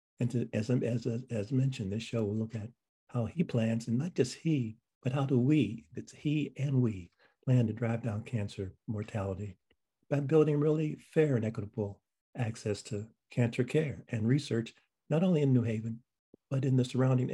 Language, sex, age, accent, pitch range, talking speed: English, male, 50-69, American, 110-130 Hz, 185 wpm